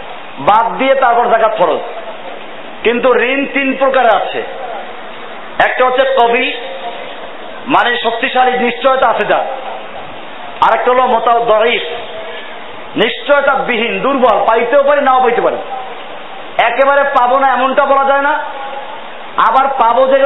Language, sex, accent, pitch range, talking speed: Bengali, male, native, 230-270 Hz, 45 wpm